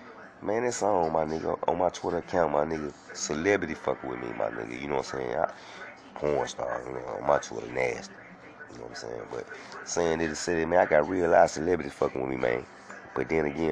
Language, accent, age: English, American, 30-49